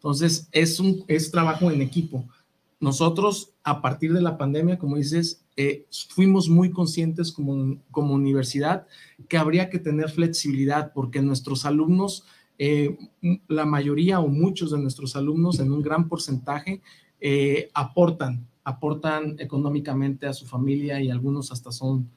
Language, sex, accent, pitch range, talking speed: Spanish, male, Mexican, 135-165 Hz, 145 wpm